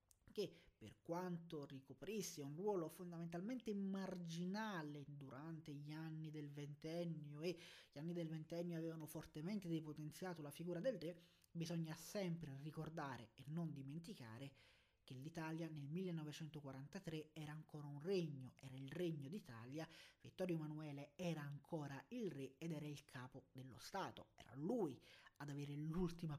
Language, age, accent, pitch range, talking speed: Italian, 30-49, native, 150-185 Hz, 135 wpm